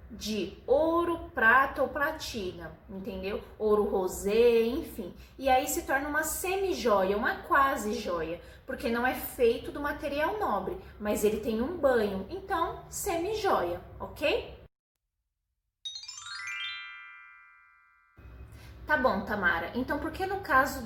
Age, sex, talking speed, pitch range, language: 20-39, female, 115 wpm, 220-325 Hz, Portuguese